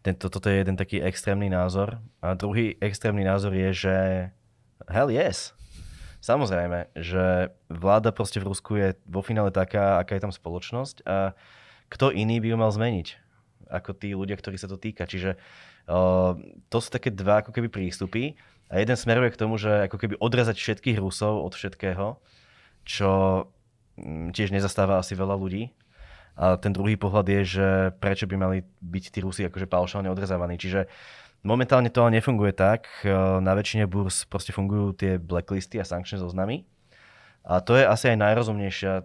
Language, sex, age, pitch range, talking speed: Slovak, male, 20-39, 95-110 Hz, 160 wpm